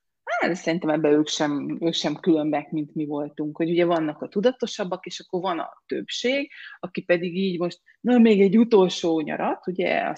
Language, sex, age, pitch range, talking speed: Hungarian, female, 30-49, 170-225 Hz, 175 wpm